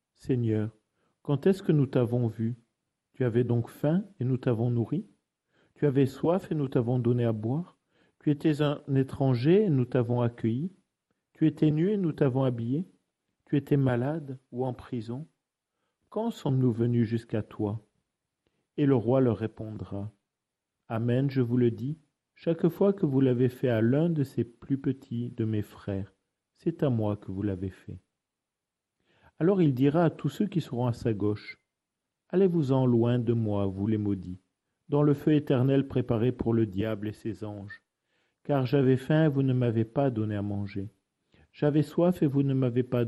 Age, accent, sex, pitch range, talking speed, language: 50-69, French, male, 110-140 Hz, 180 wpm, French